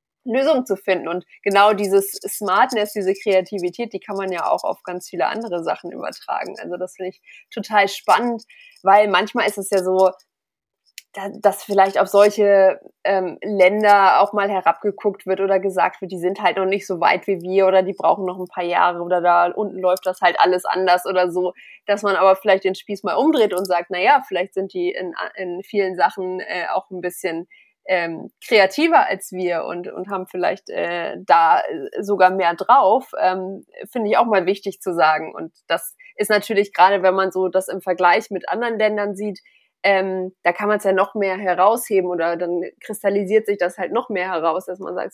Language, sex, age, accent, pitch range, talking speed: German, female, 20-39, German, 185-210 Hz, 200 wpm